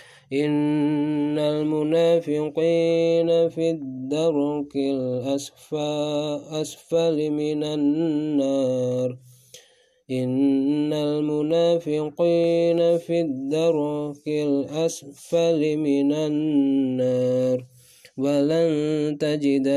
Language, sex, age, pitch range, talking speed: Indonesian, male, 20-39, 140-150 Hz, 45 wpm